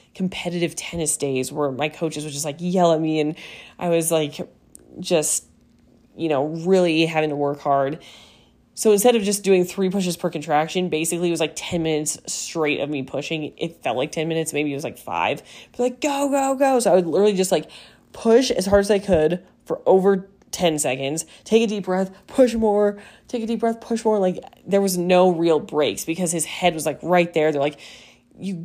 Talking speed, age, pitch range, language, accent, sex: 215 wpm, 20-39, 155-205 Hz, English, American, female